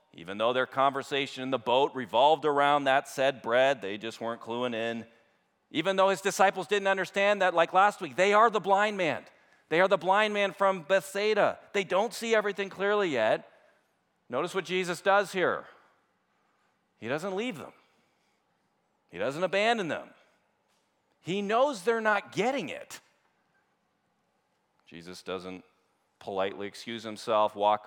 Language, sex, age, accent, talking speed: English, male, 40-59, American, 150 wpm